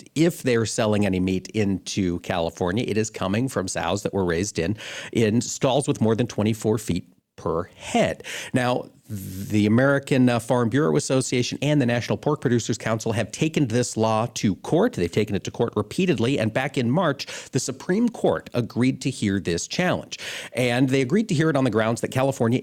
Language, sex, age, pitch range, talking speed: English, male, 50-69, 105-140 Hz, 190 wpm